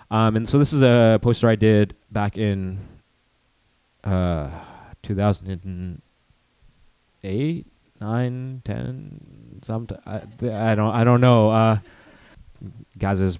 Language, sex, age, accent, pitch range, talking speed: English, male, 30-49, American, 95-115 Hz, 110 wpm